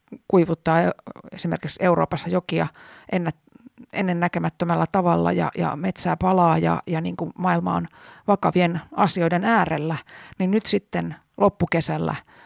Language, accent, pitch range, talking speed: Finnish, native, 160-185 Hz, 115 wpm